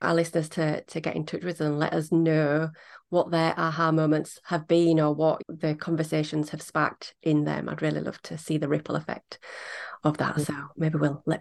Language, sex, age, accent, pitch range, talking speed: English, female, 30-49, British, 155-190 Hz, 210 wpm